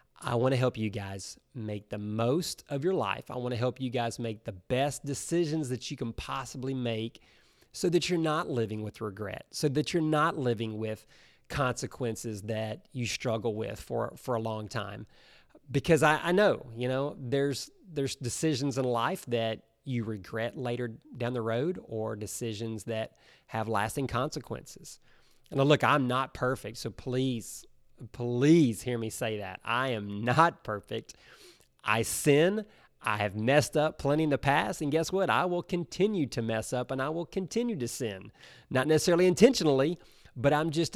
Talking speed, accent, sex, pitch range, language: 175 wpm, American, male, 115-145 Hz, English